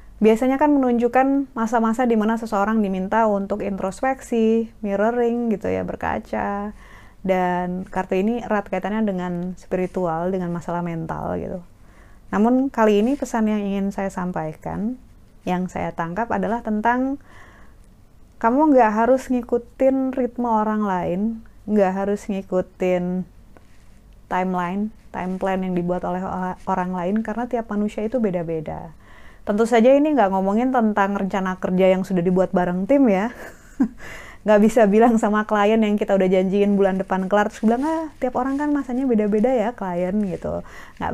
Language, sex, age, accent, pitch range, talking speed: Indonesian, female, 20-39, native, 175-230 Hz, 145 wpm